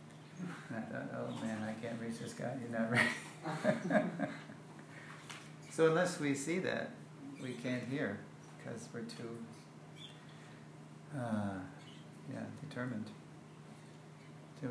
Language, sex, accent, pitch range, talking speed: English, male, American, 110-140 Hz, 100 wpm